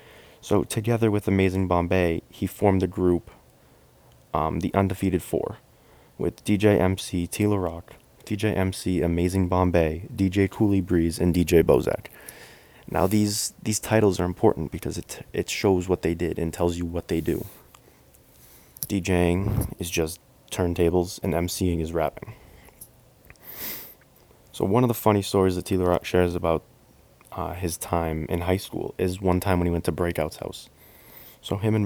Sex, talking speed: male, 160 wpm